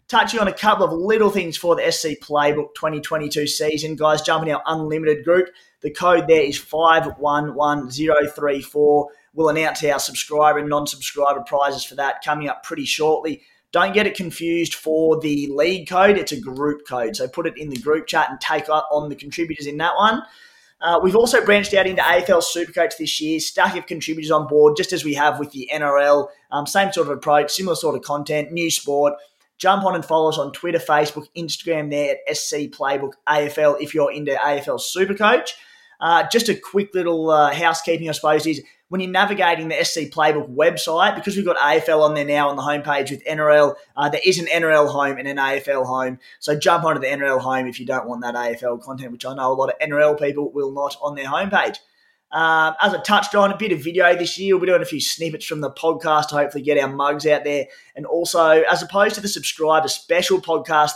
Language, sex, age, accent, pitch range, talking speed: English, male, 20-39, Australian, 145-170 Hz, 215 wpm